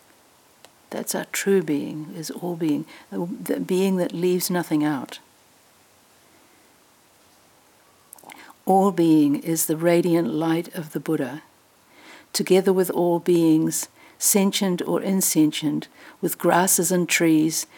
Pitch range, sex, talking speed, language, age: 155-185 Hz, female, 110 wpm, English, 60-79